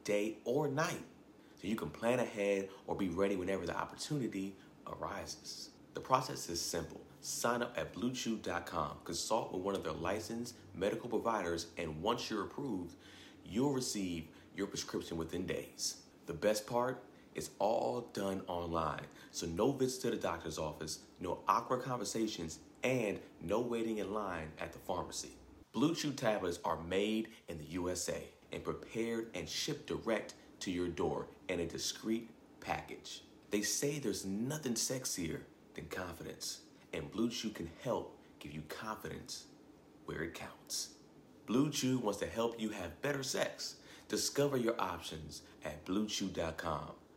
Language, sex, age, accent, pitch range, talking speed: English, male, 40-59, American, 85-115 Hz, 150 wpm